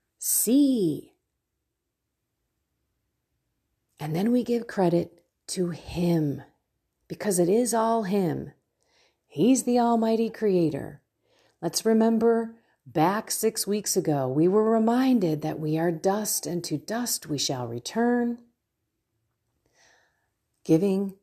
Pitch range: 155-225 Hz